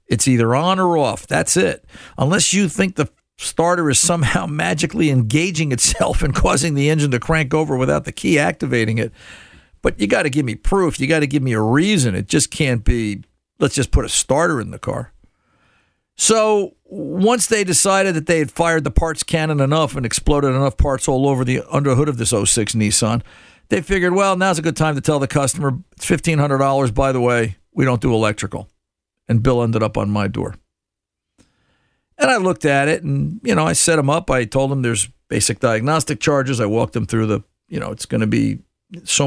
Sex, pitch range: male, 120-160 Hz